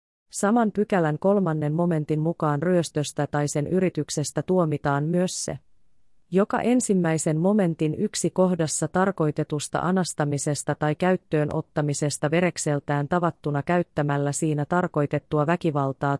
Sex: female